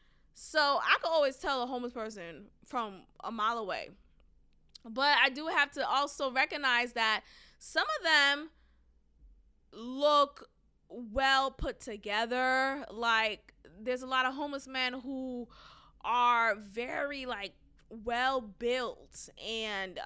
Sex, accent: female, American